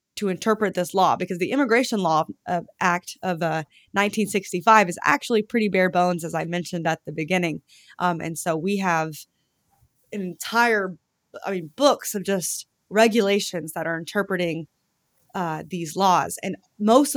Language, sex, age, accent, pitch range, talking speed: English, female, 20-39, American, 170-205 Hz, 155 wpm